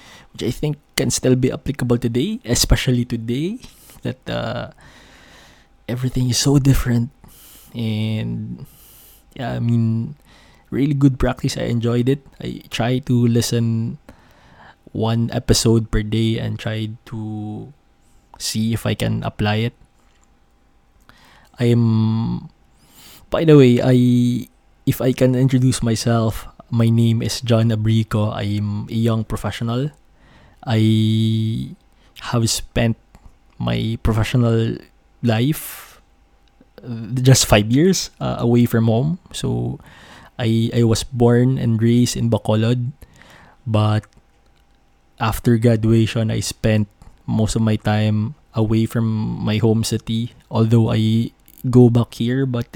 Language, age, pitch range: English, 20-39, 110-125 Hz